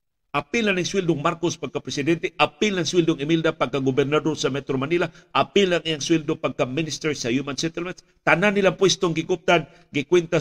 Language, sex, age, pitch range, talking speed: Filipino, male, 50-69, 135-185 Hz, 175 wpm